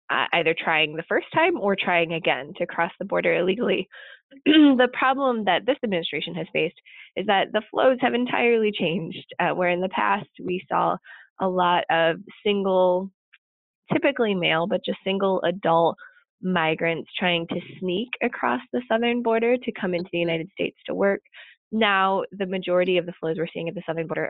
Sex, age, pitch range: female, 20-39, 160-200 Hz